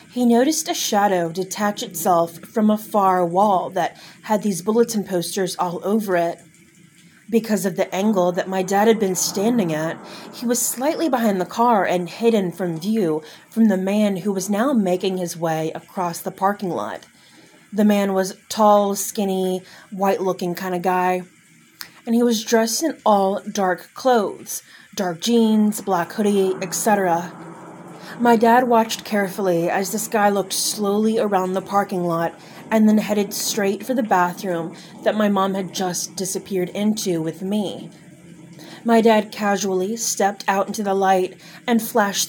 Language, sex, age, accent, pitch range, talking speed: English, female, 30-49, American, 180-215 Hz, 160 wpm